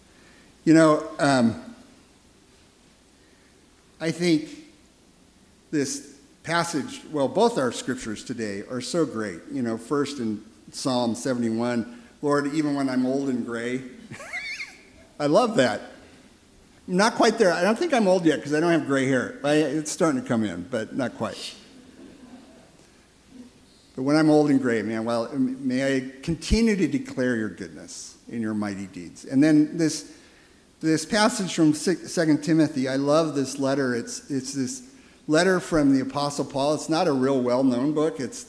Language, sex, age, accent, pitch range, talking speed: English, male, 50-69, American, 125-165 Hz, 160 wpm